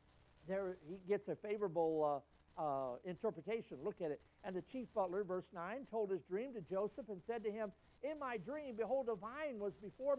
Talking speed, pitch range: 200 wpm, 180-240 Hz